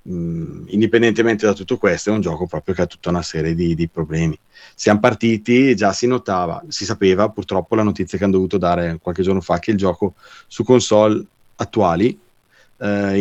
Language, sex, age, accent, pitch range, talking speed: Italian, male, 30-49, native, 90-110 Hz, 185 wpm